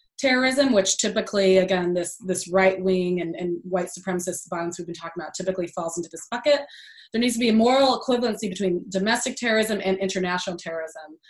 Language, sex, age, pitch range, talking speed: English, female, 20-39, 180-210 Hz, 185 wpm